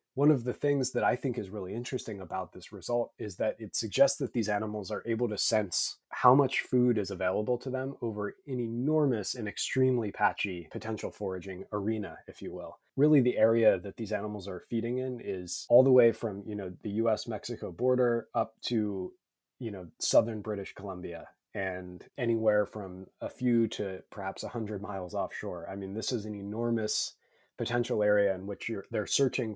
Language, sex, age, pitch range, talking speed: English, male, 20-39, 100-125 Hz, 190 wpm